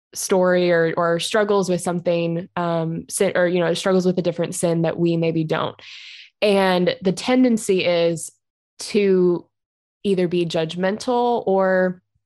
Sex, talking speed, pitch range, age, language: female, 135 wpm, 170-195 Hz, 20-39, English